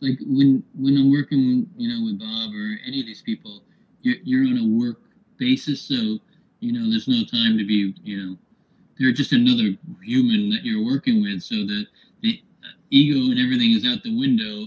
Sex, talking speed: male, 195 wpm